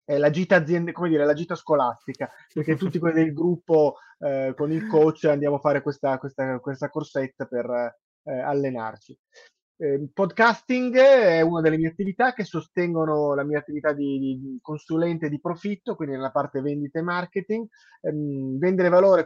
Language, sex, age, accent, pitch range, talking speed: Italian, male, 20-39, native, 145-175 Hz, 170 wpm